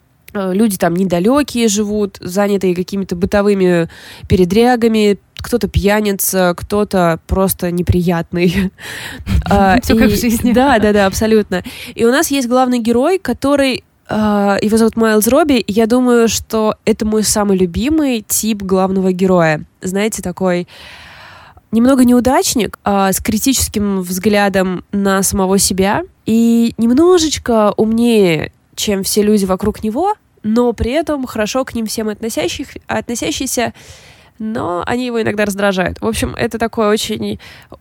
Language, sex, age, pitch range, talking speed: Russian, female, 20-39, 195-230 Hz, 125 wpm